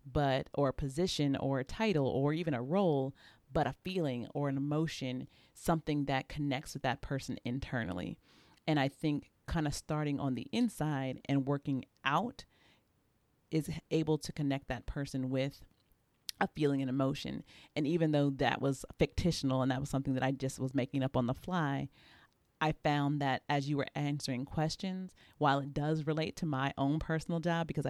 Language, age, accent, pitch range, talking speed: English, 40-59, American, 135-155 Hz, 180 wpm